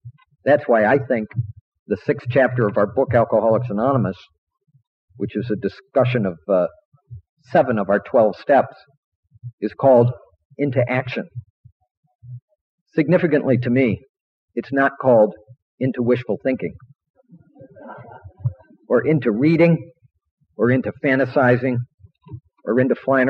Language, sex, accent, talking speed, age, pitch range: English, male, American, 115 wpm, 50-69, 110-135 Hz